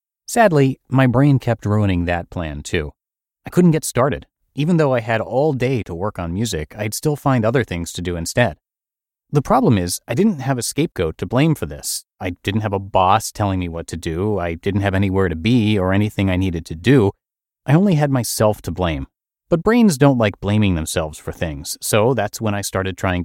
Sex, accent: male, American